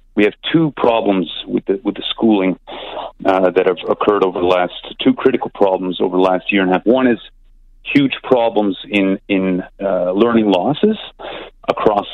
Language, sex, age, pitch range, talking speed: English, male, 40-59, 105-140 Hz, 180 wpm